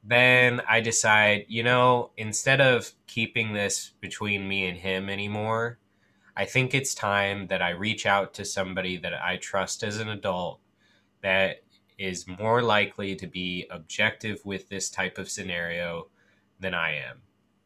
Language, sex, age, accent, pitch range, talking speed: English, male, 20-39, American, 95-110 Hz, 155 wpm